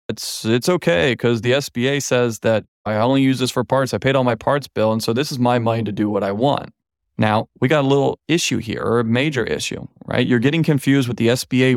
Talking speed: 250 wpm